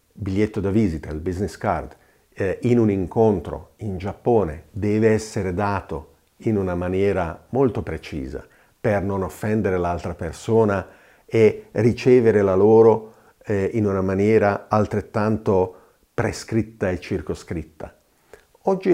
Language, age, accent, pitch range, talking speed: Italian, 50-69, native, 95-120 Hz, 120 wpm